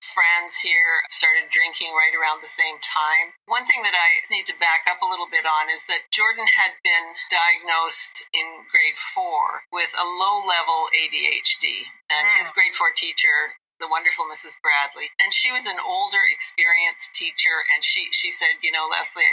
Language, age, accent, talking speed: English, 50-69, American, 180 wpm